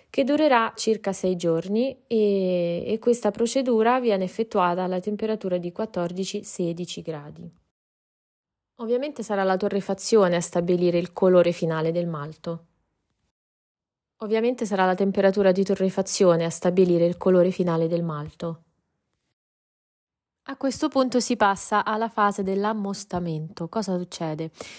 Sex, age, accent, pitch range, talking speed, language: female, 20-39, native, 175-225 Hz, 120 wpm, Italian